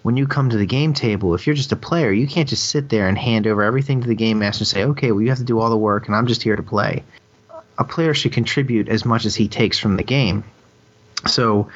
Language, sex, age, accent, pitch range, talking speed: English, male, 30-49, American, 100-120 Hz, 280 wpm